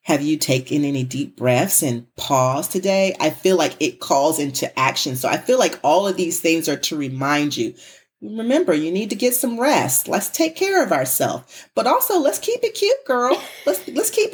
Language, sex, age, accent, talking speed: English, female, 40-59, American, 210 wpm